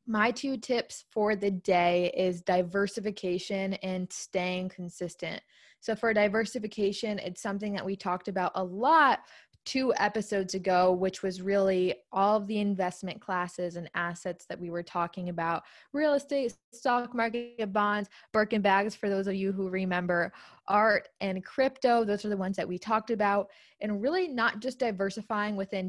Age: 20-39